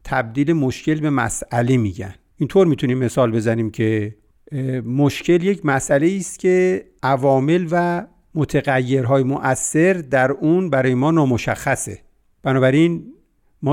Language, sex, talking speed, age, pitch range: Persian, male, 120 wpm, 50-69, 125-160 Hz